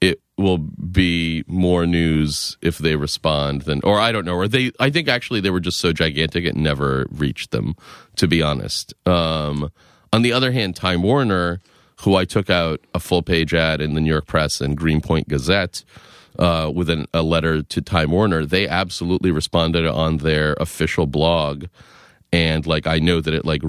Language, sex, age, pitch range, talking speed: English, male, 30-49, 80-105 Hz, 190 wpm